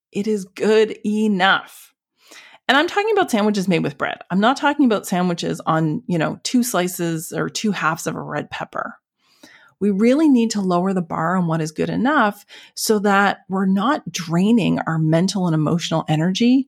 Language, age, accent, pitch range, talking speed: English, 30-49, American, 175-245 Hz, 185 wpm